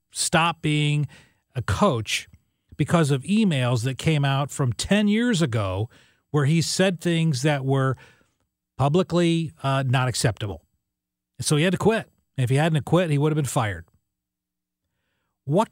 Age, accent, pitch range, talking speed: 40-59, American, 125-190 Hz, 150 wpm